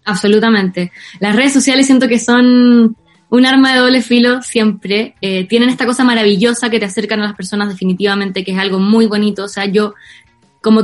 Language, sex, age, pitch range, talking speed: Spanish, female, 20-39, 195-230 Hz, 190 wpm